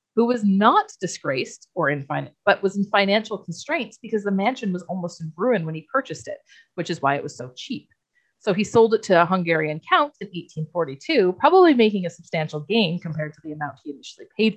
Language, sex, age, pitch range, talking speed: English, female, 30-49, 165-220 Hz, 215 wpm